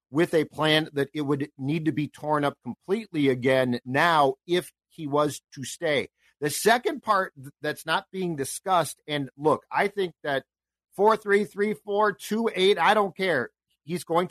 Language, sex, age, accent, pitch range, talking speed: English, male, 50-69, American, 140-175 Hz, 165 wpm